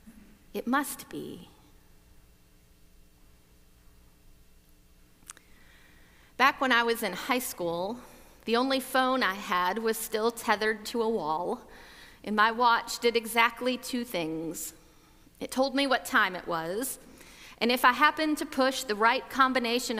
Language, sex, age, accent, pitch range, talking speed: English, female, 30-49, American, 195-260 Hz, 130 wpm